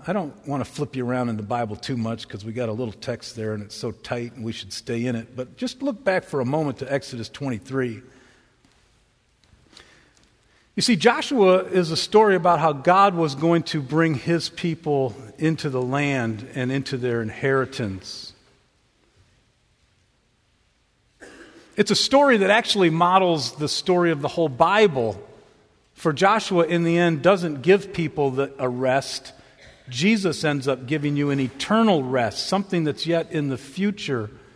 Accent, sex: American, male